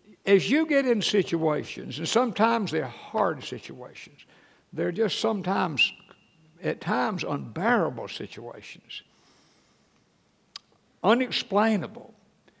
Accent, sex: American, male